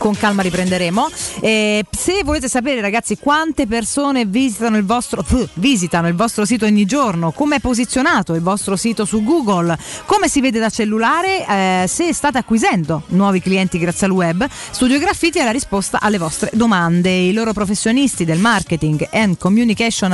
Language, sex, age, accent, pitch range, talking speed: Italian, female, 30-49, native, 185-260 Hz, 170 wpm